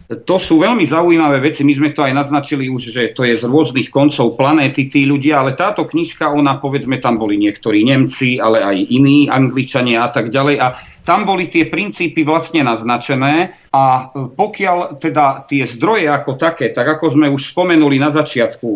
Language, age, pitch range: Czech, 40-59, 130-155 Hz